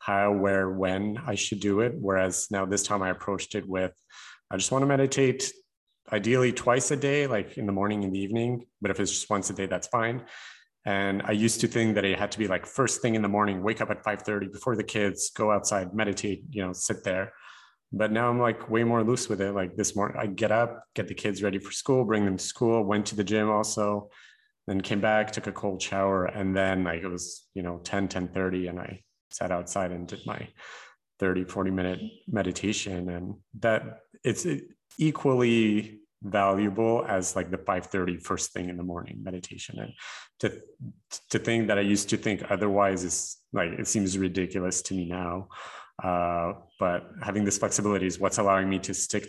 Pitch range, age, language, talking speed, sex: 95-110 Hz, 30-49, English, 210 wpm, male